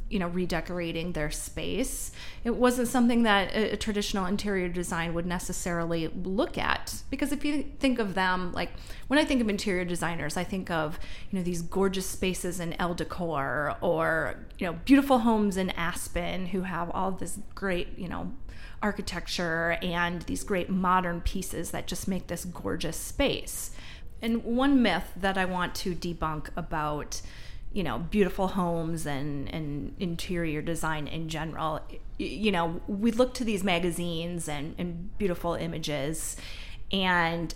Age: 30-49